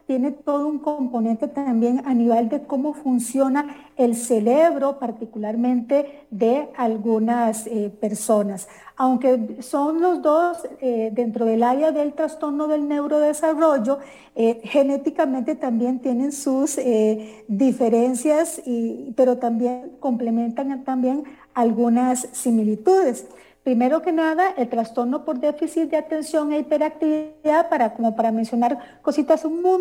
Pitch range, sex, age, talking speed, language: 235-300 Hz, female, 50-69, 120 wpm, English